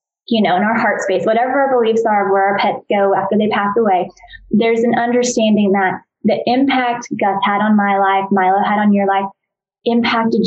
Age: 20-39